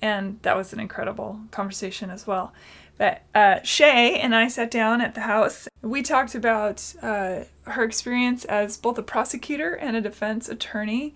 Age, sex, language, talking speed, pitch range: 20-39, female, English, 170 wpm, 200-230 Hz